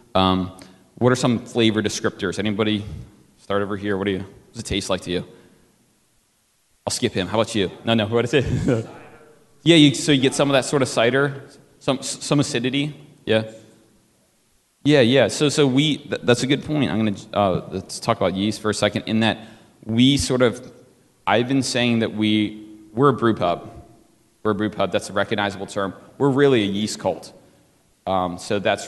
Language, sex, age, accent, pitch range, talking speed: English, male, 30-49, American, 100-120 Hz, 200 wpm